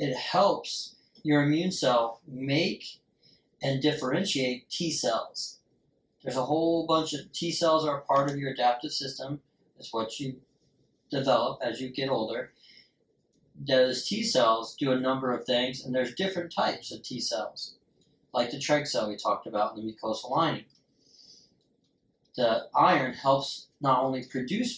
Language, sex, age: English, male, 40-59